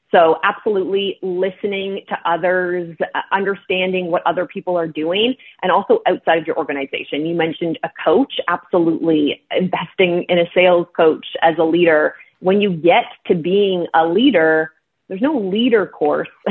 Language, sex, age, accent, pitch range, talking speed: English, female, 30-49, American, 160-200 Hz, 150 wpm